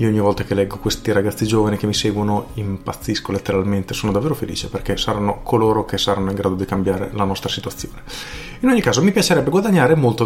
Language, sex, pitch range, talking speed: Italian, male, 105-135 Hz, 205 wpm